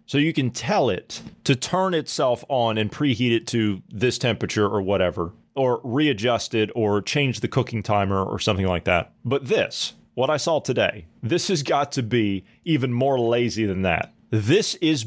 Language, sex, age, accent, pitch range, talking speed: English, male, 30-49, American, 105-145 Hz, 185 wpm